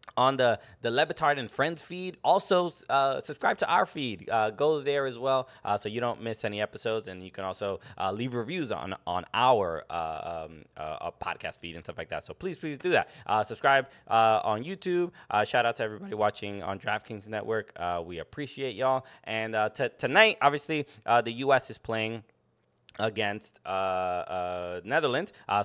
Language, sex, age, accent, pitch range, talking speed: English, male, 20-39, American, 100-130 Hz, 195 wpm